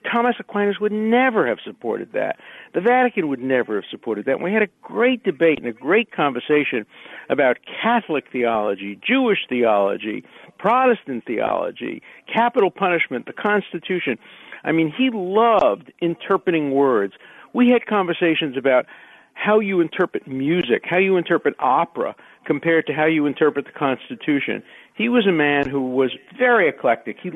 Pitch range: 125-195 Hz